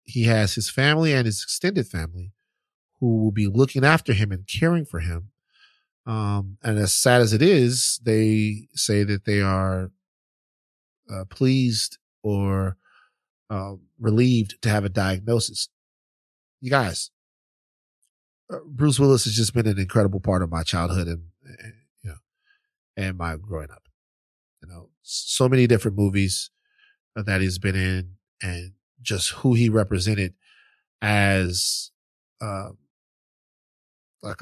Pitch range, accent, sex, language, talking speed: 90-115 Hz, American, male, English, 135 wpm